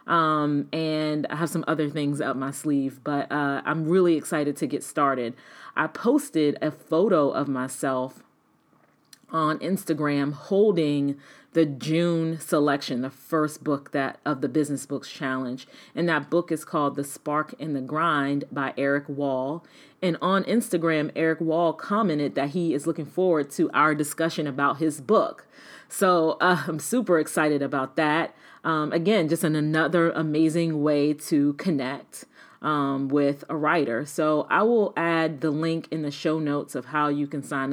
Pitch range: 145-165 Hz